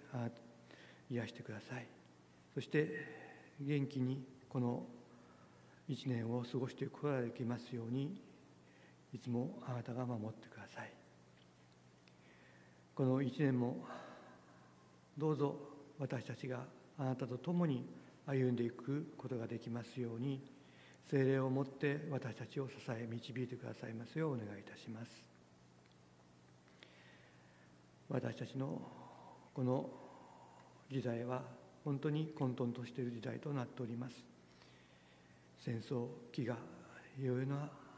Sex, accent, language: male, native, Japanese